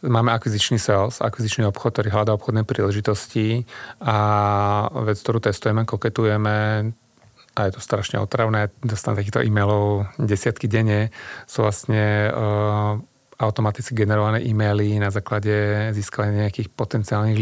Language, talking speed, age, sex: Czech, 120 wpm, 30-49, male